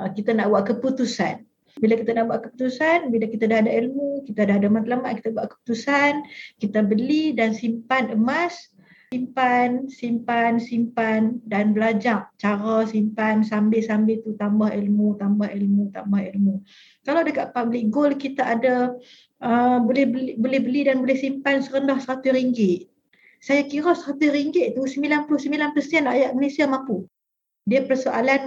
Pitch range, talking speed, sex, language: 225-275 Hz, 140 wpm, female, Malay